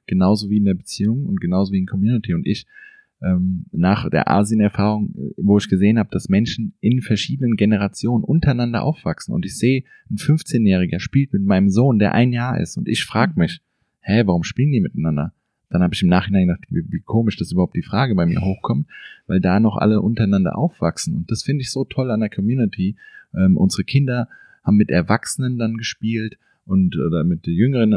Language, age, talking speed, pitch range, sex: German, 20-39, 195 wpm, 100-130 Hz, male